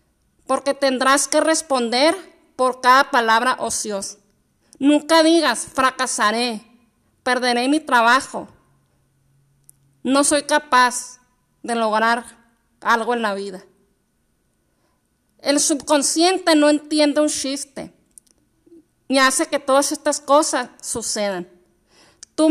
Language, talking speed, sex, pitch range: Spanish, 100 wpm, female, 235-300 Hz